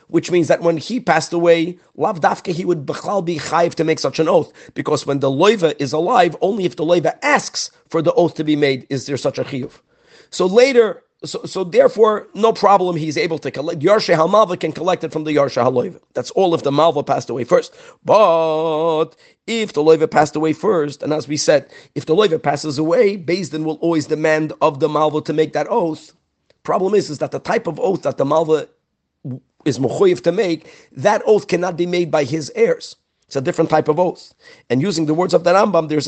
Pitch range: 155-185 Hz